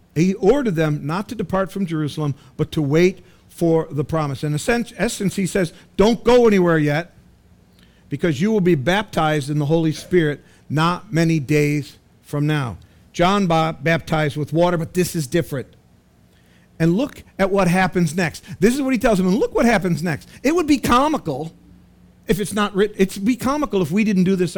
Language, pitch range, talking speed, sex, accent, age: English, 160-235 Hz, 195 wpm, male, American, 50-69